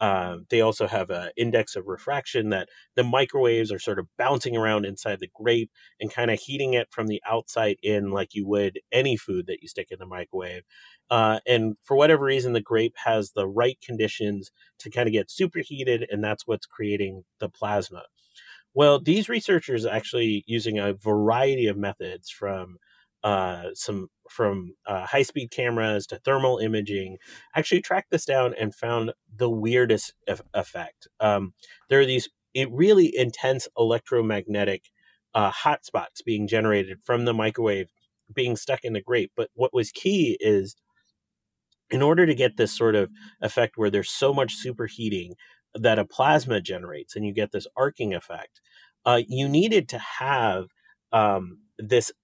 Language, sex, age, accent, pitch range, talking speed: English, male, 30-49, American, 105-135 Hz, 170 wpm